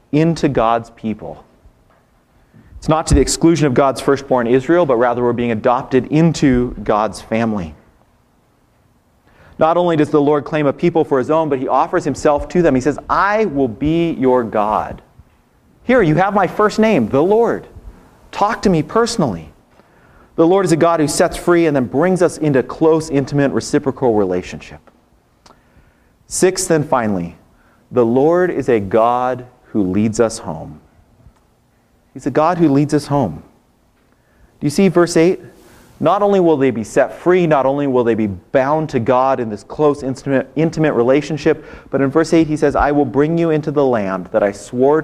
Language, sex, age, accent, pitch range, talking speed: English, male, 40-59, American, 115-160 Hz, 180 wpm